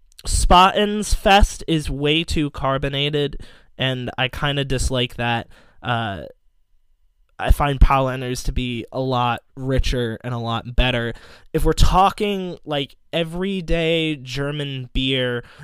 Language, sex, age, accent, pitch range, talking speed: English, male, 20-39, American, 120-150 Hz, 125 wpm